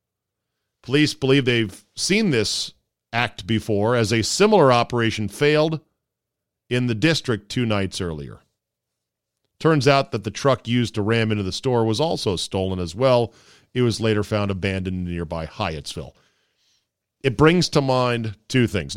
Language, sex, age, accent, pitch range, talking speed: English, male, 40-59, American, 105-135 Hz, 150 wpm